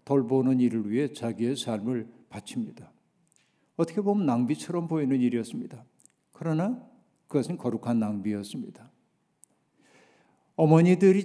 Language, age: Korean, 50-69